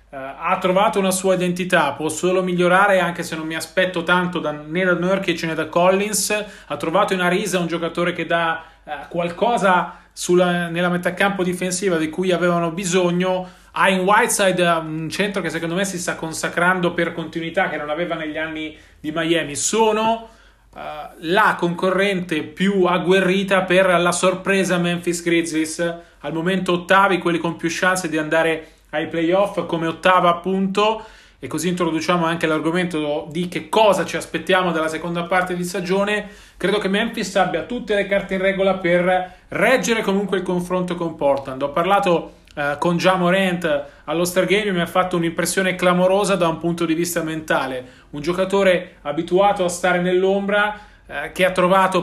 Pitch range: 165-190 Hz